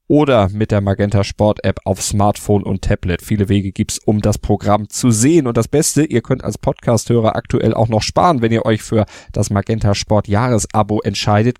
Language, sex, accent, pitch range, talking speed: German, male, German, 105-120 Hz, 200 wpm